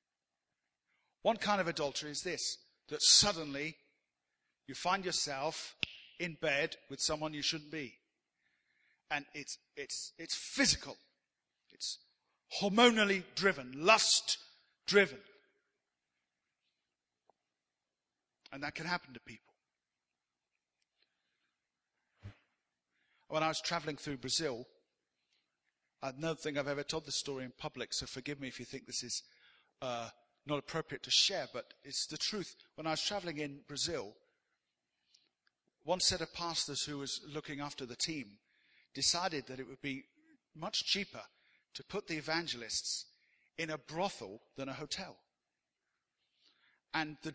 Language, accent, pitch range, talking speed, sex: English, British, 115-165 Hz, 130 wpm, male